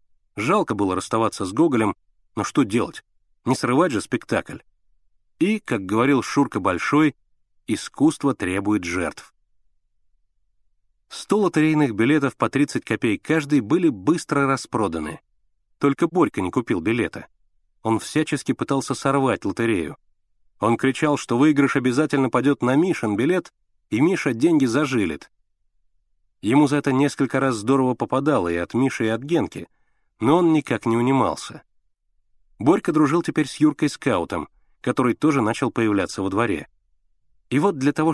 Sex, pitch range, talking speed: male, 110-155 Hz, 135 wpm